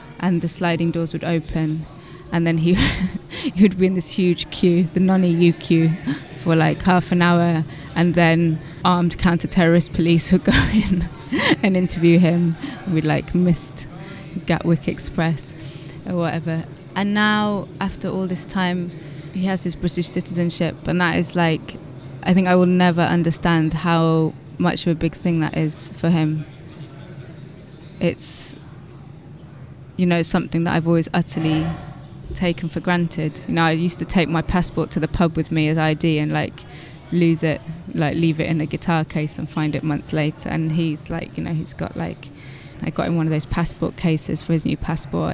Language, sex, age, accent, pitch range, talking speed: English, female, 20-39, British, 155-175 Hz, 180 wpm